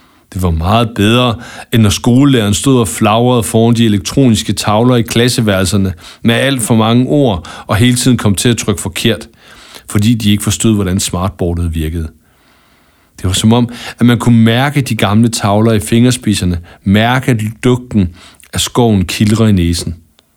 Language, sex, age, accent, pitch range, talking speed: English, male, 60-79, Danish, 90-120 Hz, 170 wpm